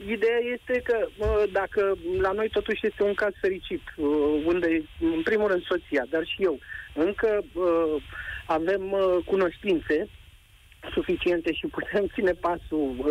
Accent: native